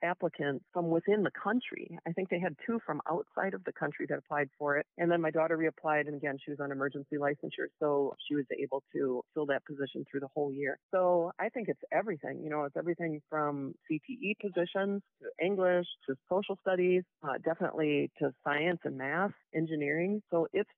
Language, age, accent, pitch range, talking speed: English, 40-59, American, 145-175 Hz, 200 wpm